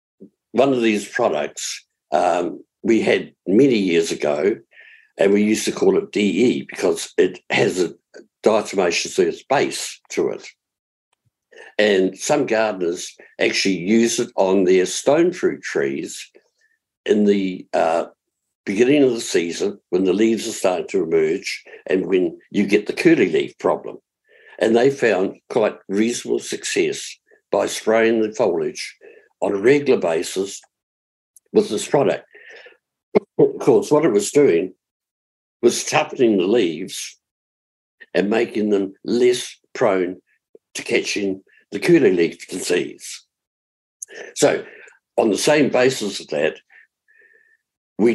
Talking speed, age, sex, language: 130 wpm, 60-79, male, English